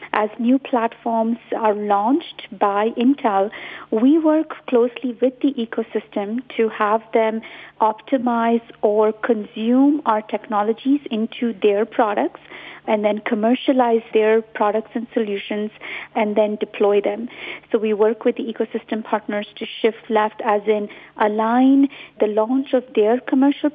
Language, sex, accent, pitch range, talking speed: English, female, Indian, 215-245 Hz, 135 wpm